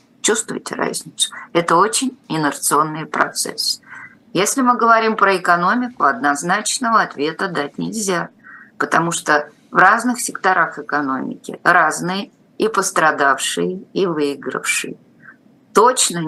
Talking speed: 100 wpm